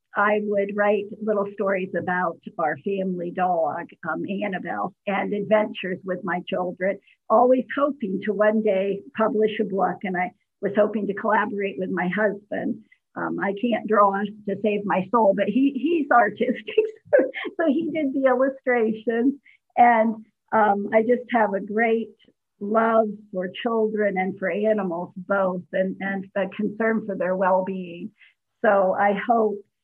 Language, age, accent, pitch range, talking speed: English, 50-69, American, 195-230 Hz, 150 wpm